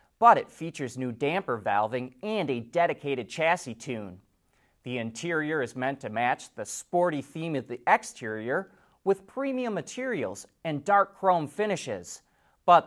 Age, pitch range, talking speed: 30-49, 125-190 Hz, 145 wpm